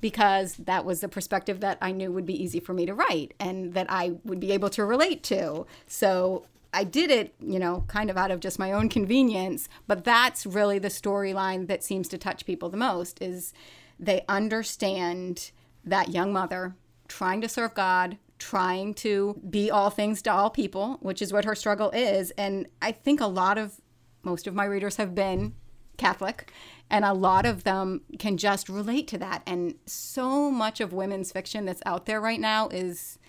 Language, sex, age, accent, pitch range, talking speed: English, female, 30-49, American, 185-225 Hz, 195 wpm